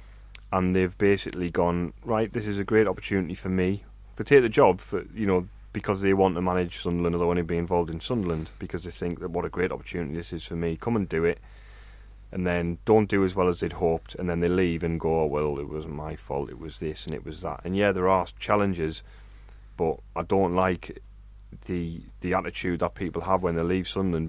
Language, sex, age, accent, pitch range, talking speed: English, male, 30-49, British, 90-100 Hz, 230 wpm